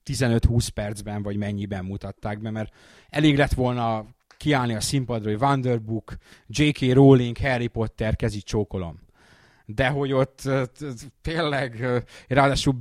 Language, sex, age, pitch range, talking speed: Hungarian, male, 30-49, 100-130 Hz, 120 wpm